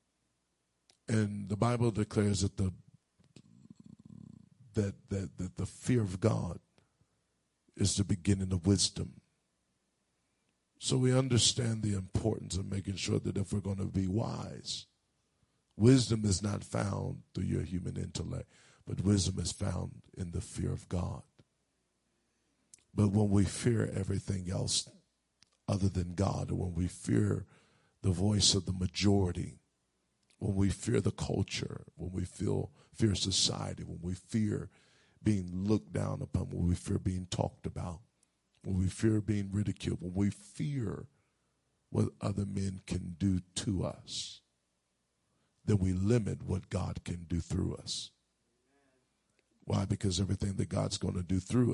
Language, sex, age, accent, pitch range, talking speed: English, male, 50-69, American, 90-110 Hz, 145 wpm